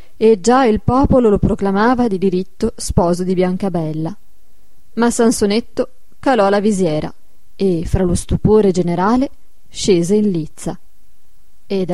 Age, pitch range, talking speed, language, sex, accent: 20-39, 190-240 Hz, 125 wpm, Italian, female, native